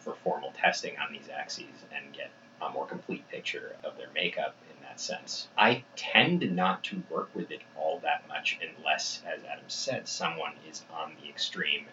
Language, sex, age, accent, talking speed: English, male, 30-49, American, 185 wpm